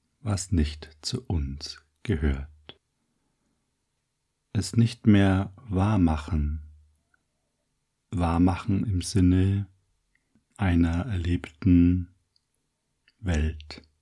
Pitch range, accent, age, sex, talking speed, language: 80-105 Hz, German, 60-79, male, 65 wpm, German